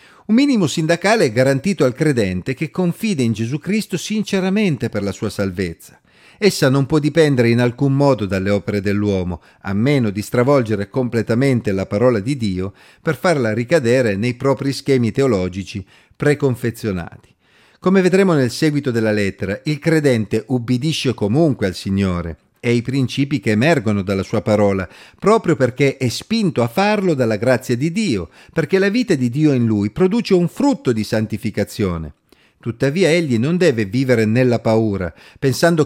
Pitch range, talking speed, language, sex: 110-155 Hz, 155 wpm, Italian, male